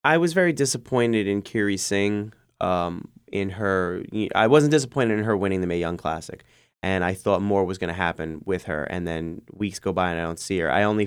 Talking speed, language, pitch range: 230 wpm, English, 90-110 Hz